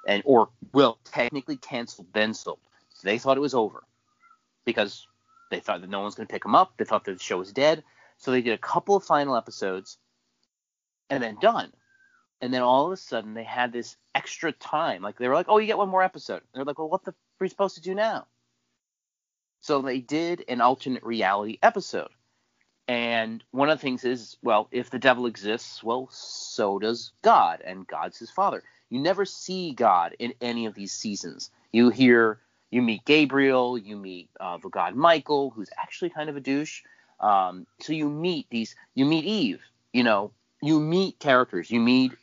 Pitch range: 115-155 Hz